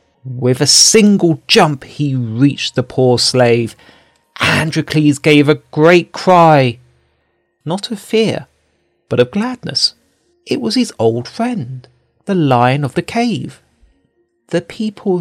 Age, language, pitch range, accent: 40-59, Chinese, 120-180 Hz, British